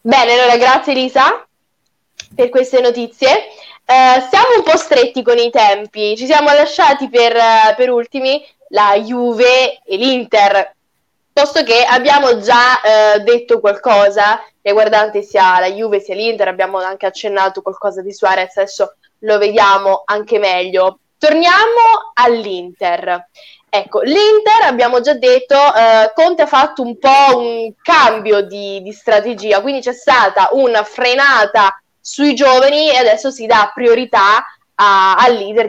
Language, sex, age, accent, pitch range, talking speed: Italian, female, 10-29, native, 205-275 Hz, 135 wpm